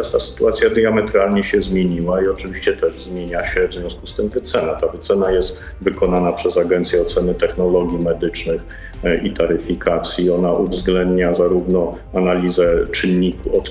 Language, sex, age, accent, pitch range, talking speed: Polish, male, 50-69, native, 90-100 Hz, 135 wpm